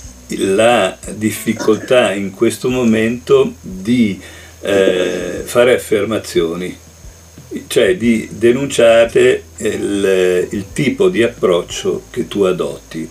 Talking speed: 90 wpm